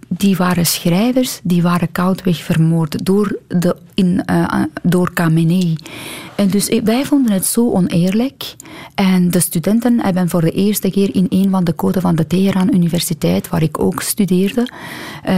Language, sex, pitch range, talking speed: Dutch, female, 180-210 Hz, 155 wpm